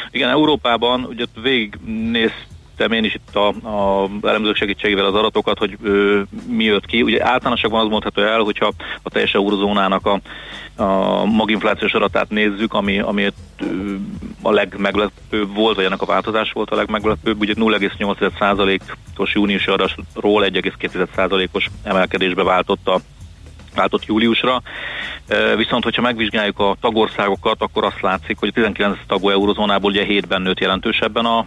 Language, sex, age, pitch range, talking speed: Hungarian, male, 40-59, 100-110 Hz, 135 wpm